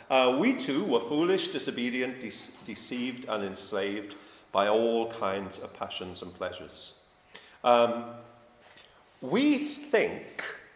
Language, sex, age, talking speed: English, male, 50-69, 105 wpm